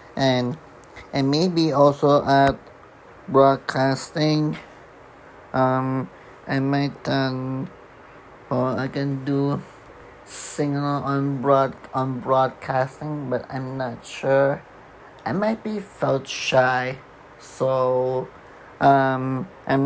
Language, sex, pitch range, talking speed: English, male, 130-145 Hz, 95 wpm